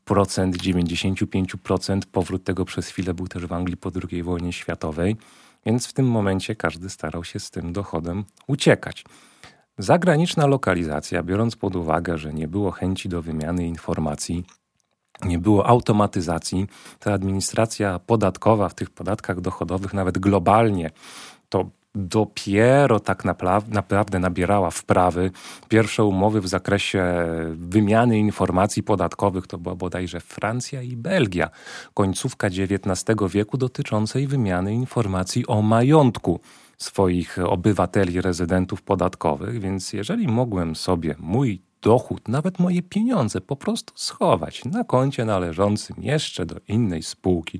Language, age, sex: Polish, 30-49, male